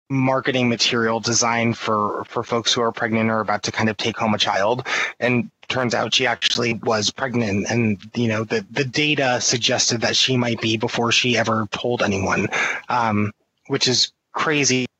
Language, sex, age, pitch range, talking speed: English, male, 20-39, 110-130 Hz, 185 wpm